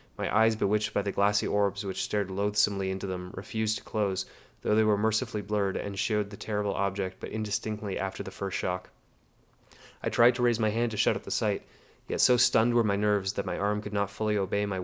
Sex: male